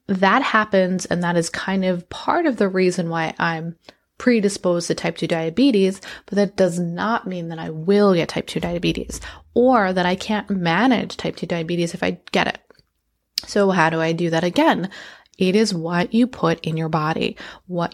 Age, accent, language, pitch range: 20-39, American, English, 170-215 Hz